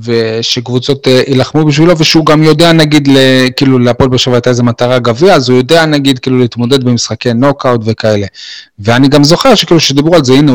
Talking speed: 180 wpm